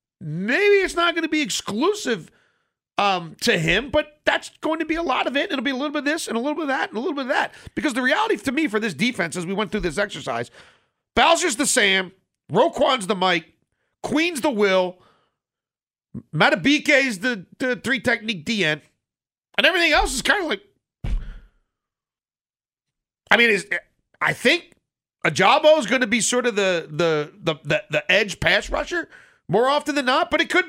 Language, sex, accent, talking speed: English, male, American, 195 wpm